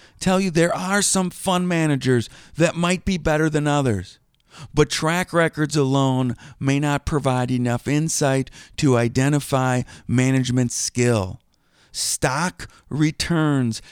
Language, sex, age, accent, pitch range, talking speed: English, male, 50-69, American, 110-155 Hz, 120 wpm